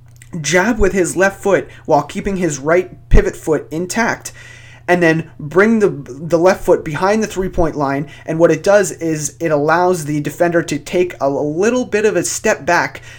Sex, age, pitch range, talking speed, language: male, 30-49, 135-190 Hz, 185 wpm, English